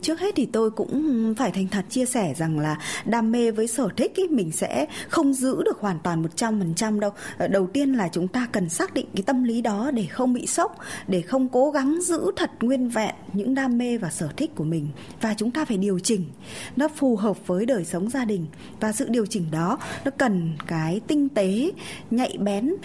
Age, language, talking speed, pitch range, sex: 20-39, Vietnamese, 230 wpm, 190-265 Hz, female